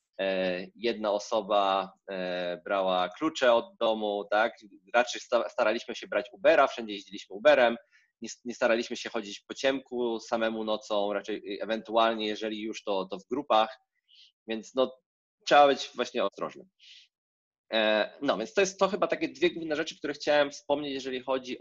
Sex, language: male, Polish